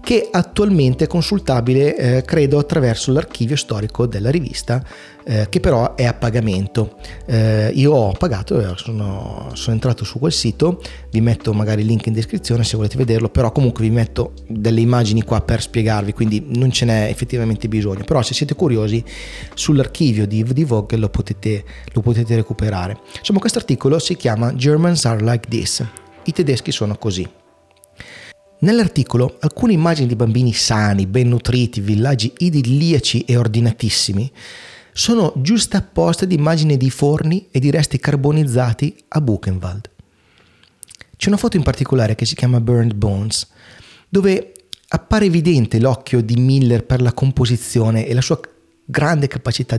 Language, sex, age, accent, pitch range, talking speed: Italian, male, 30-49, native, 110-145 Hz, 150 wpm